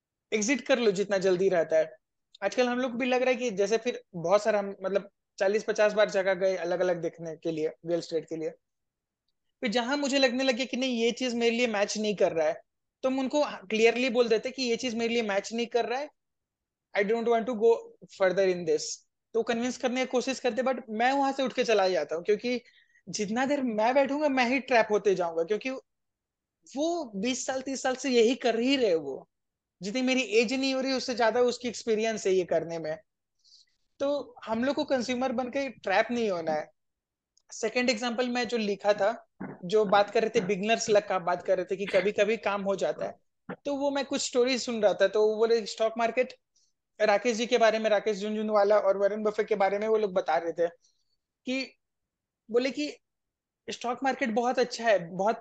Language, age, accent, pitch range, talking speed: Hindi, 20-39, native, 200-255 Hz, 215 wpm